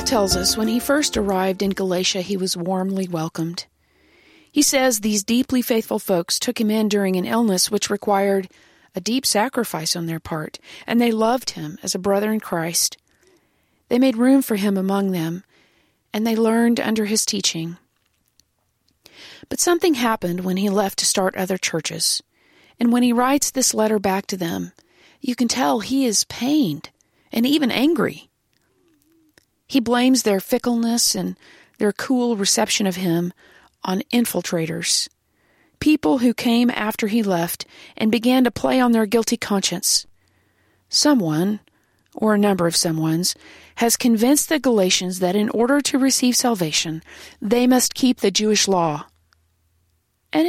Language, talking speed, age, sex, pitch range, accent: English, 155 wpm, 40-59, female, 185-245 Hz, American